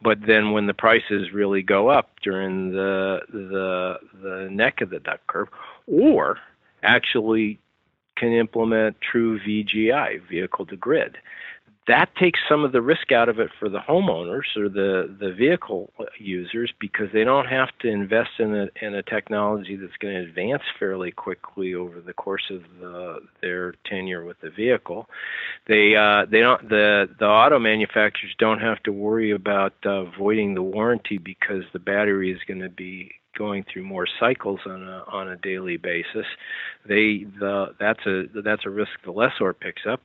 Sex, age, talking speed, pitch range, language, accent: male, 50-69, 170 wpm, 95-110 Hz, English, American